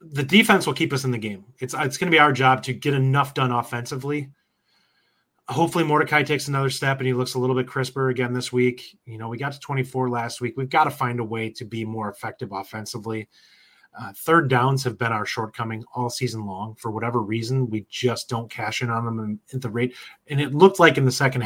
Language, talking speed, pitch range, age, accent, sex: English, 235 wpm, 115-135 Hz, 30-49, American, male